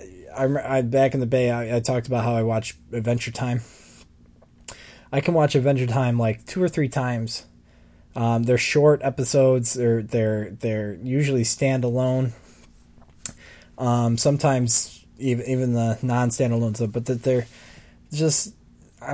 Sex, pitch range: male, 115-130 Hz